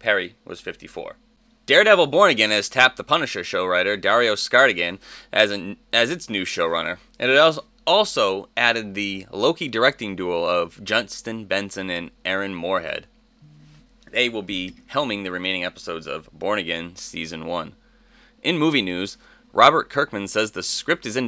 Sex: male